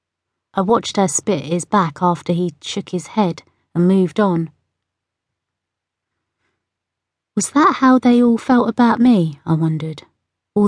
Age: 30-49